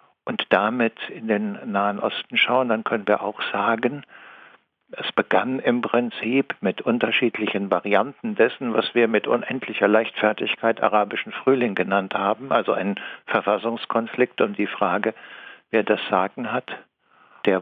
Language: German